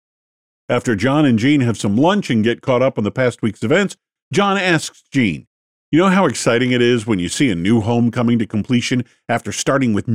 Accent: American